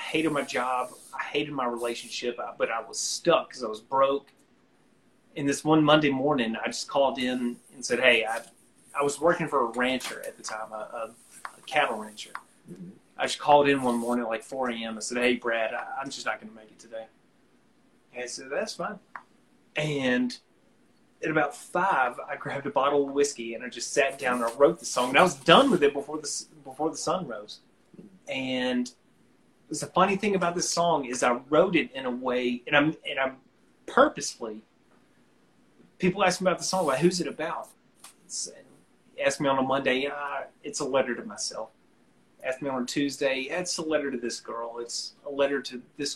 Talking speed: 205 wpm